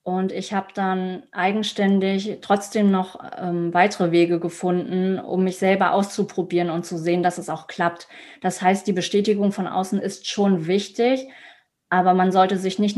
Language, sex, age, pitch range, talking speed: German, female, 20-39, 180-215 Hz, 165 wpm